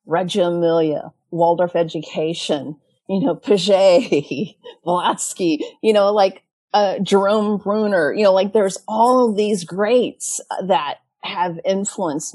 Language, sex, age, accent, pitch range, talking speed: English, female, 40-59, American, 170-215 Hz, 120 wpm